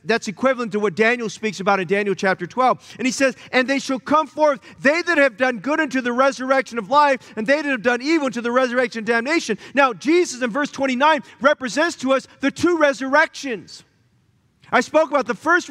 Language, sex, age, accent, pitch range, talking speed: English, male, 40-59, American, 195-280 Hz, 215 wpm